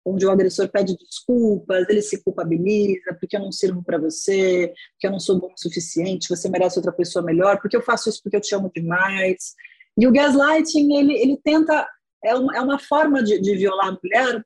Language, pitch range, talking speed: Portuguese, 190-280 Hz, 210 wpm